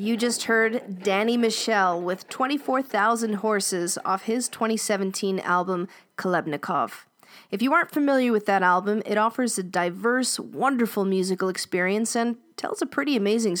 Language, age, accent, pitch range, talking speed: English, 40-59, American, 180-235 Hz, 140 wpm